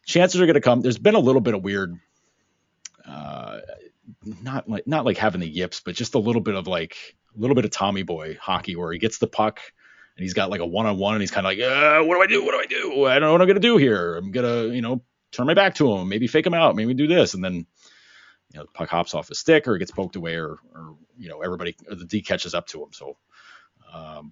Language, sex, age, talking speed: English, male, 30-49, 280 wpm